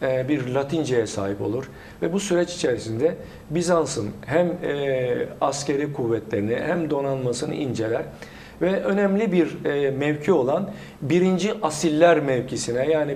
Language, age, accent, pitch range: Turkish, 50-69, native, 135-170 Hz